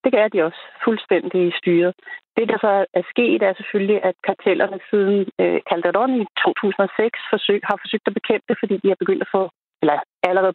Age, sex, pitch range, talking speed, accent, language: 30-49, female, 185-215 Hz, 195 wpm, native, Danish